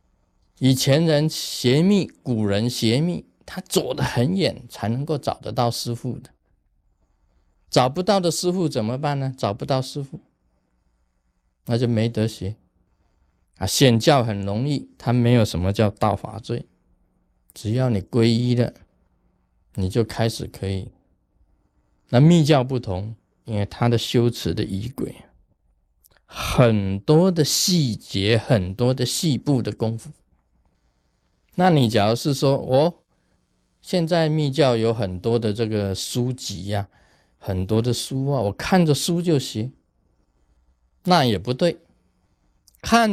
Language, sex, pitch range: Chinese, male, 95-130 Hz